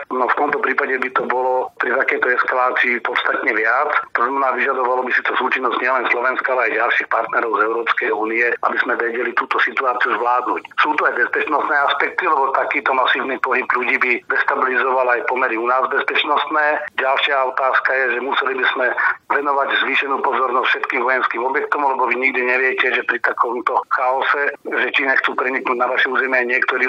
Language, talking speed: Slovak, 180 wpm